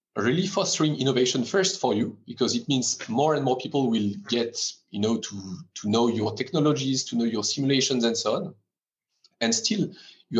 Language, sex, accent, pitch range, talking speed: English, male, French, 115-135 Hz, 185 wpm